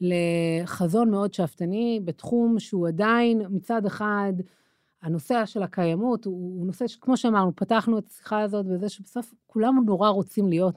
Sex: female